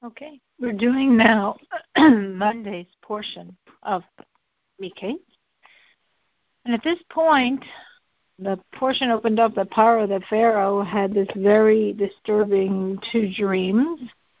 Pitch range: 185-230 Hz